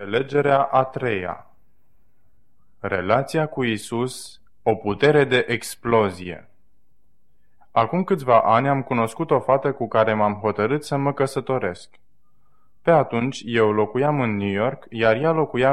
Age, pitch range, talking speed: 20-39, 105-145 Hz, 130 wpm